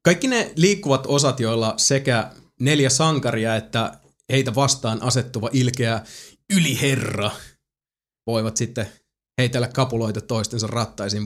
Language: Finnish